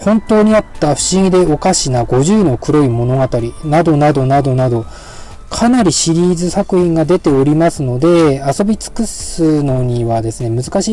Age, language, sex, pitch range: 20-39, Japanese, male, 120-165 Hz